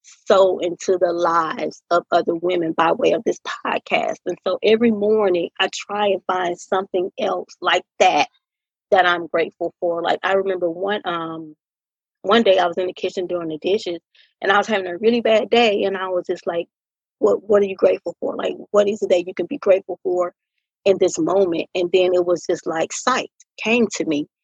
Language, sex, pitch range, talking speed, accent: English, female, 175-205 Hz, 210 wpm, American